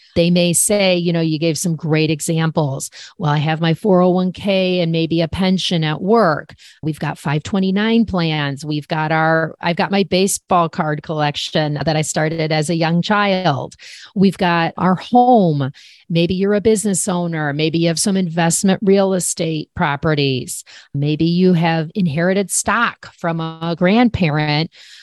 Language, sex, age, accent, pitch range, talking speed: English, female, 40-59, American, 160-200 Hz, 160 wpm